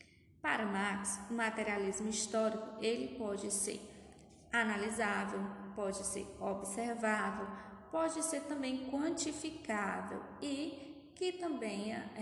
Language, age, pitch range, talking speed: Portuguese, 10-29, 200-250 Hz, 90 wpm